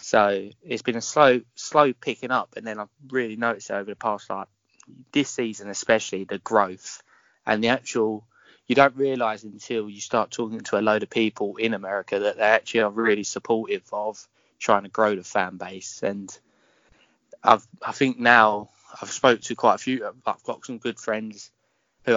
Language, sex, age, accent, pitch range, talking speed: English, male, 20-39, British, 105-120 Hz, 185 wpm